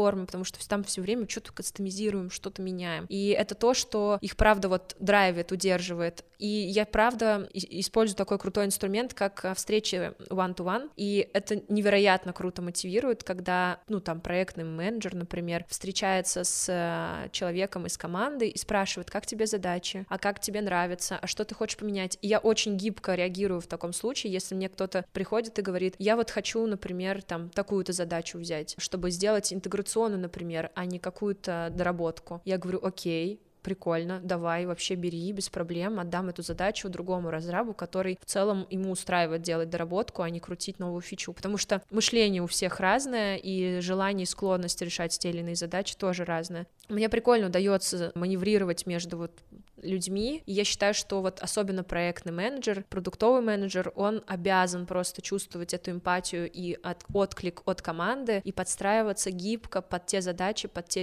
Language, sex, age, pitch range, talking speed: Russian, female, 20-39, 180-205 Hz, 165 wpm